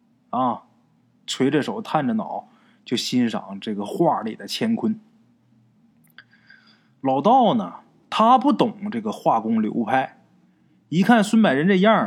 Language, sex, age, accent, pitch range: Chinese, male, 20-39, native, 160-235 Hz